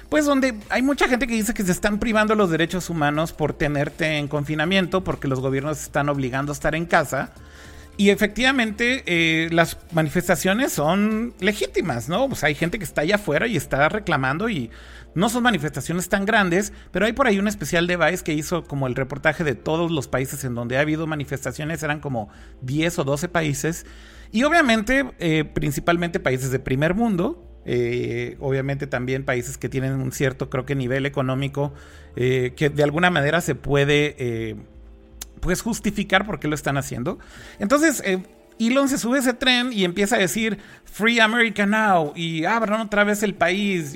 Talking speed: 180 wpm